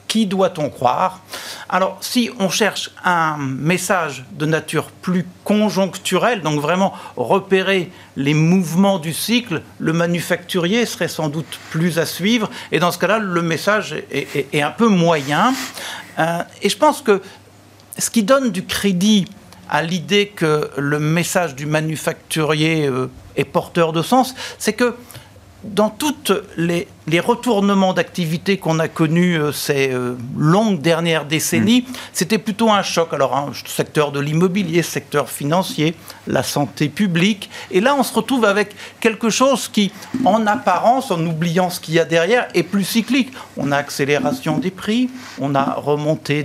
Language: French